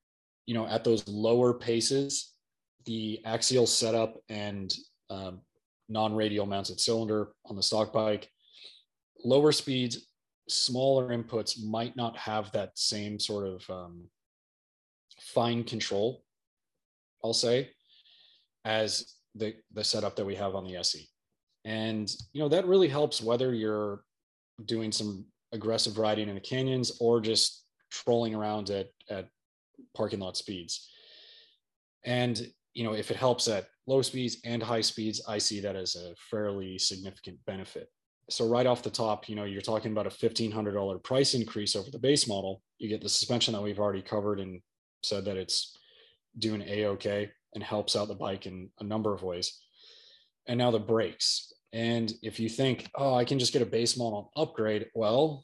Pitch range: 105-120 Hz